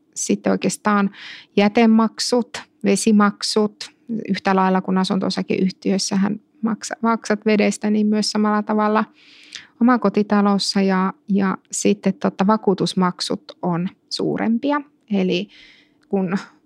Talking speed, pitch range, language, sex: 95 wpm, 195-230 Hz, Finnish, female